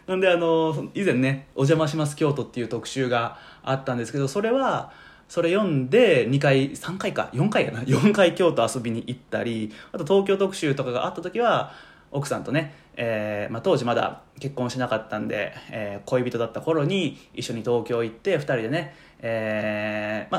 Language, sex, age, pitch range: Japanese, male, 20-39, 115-165 Hz